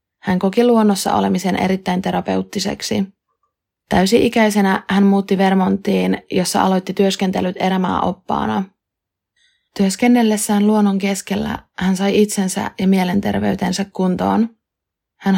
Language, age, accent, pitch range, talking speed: Finnish, 20-39, native, 185-200 Hz, 100 wpm